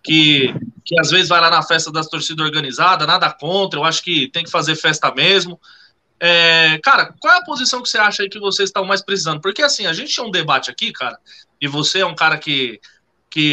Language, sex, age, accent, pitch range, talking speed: Portuguese, male, 20-39, Brazilian, 160-225 Hz, 230 wpm